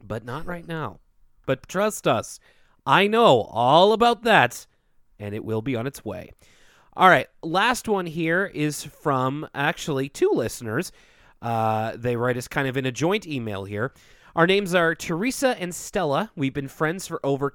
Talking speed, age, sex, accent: 175 wpm, 30-49, male, American